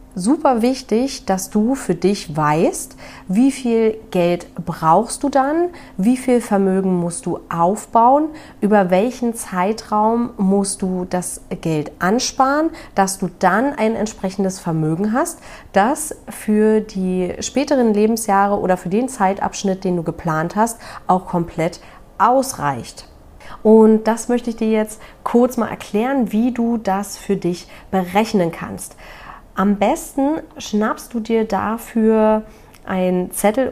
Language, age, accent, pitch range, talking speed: German, 40-59, German, 185-235 Hz, 130 wpm